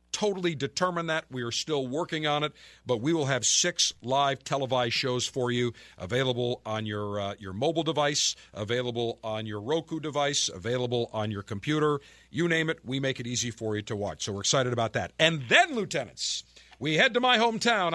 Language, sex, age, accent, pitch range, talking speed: English, male, 50-69, American, 110-160 Hz, 195 wpm